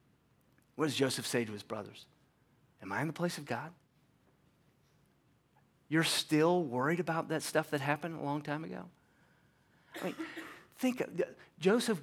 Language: English